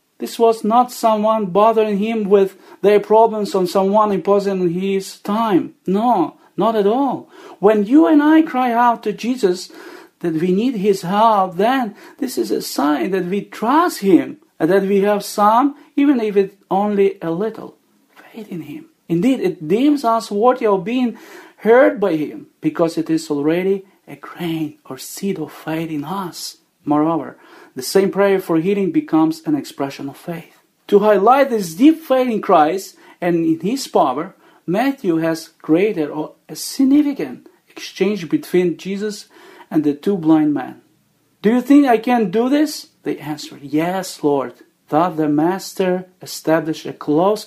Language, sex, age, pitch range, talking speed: Ukrainian, male, 40-59, 165-240 Hz, 160 wpm